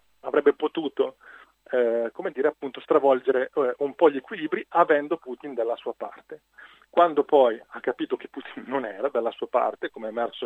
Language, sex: Italian, male